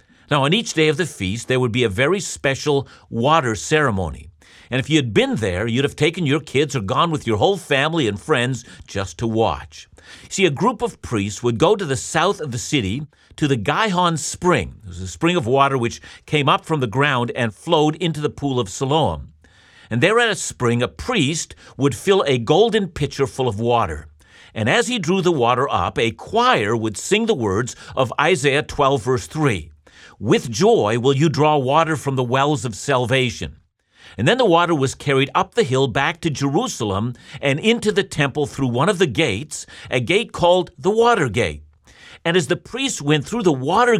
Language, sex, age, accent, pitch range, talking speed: English, male, 50-69, American, 120-165 Hz, 205 wpm